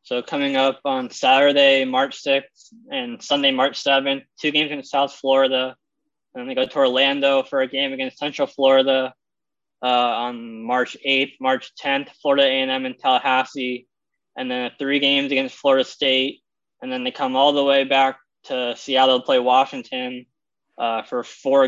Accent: American